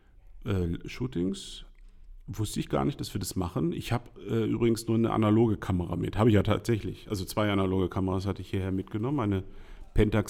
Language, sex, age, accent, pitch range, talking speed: German, male, 50-69, German, 100-135 Hz, 185 wpm